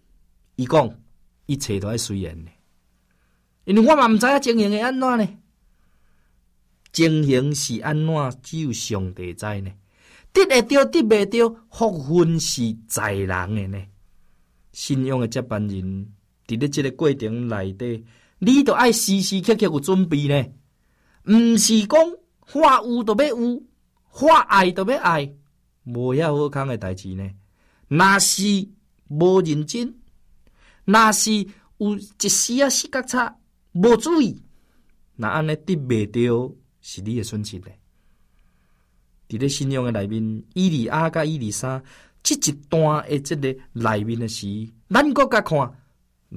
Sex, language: male, Chinese